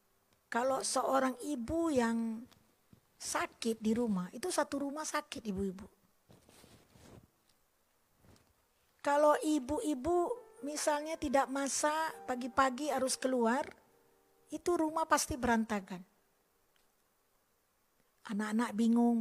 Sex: female